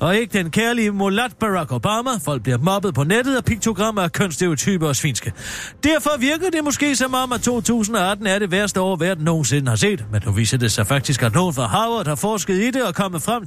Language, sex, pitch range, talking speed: Danish, male, 135-210 Hz, 225 wpm